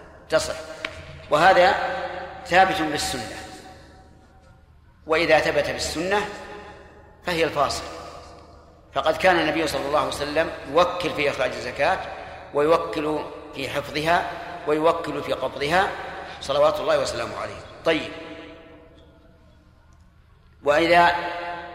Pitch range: 135-175 Hz